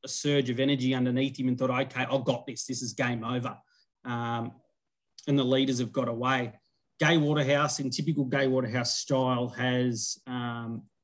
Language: English